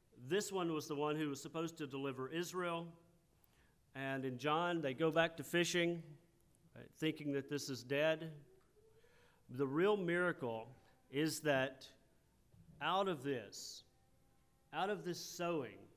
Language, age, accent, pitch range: English, 40-59, American, 130-165 Hz